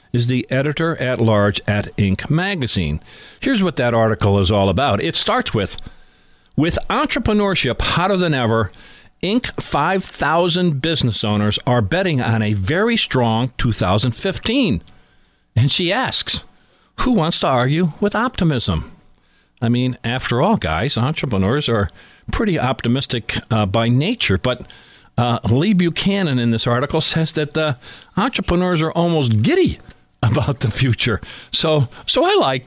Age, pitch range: 60-79, 110-160 Hz